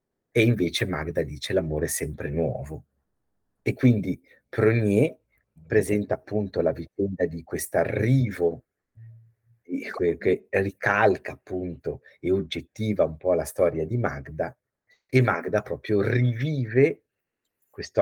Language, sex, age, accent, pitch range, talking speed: Italian, male, 50-69, native, 80-110 Hz, 115 wpm